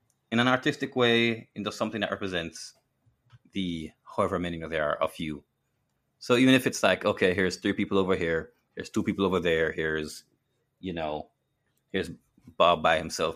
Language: English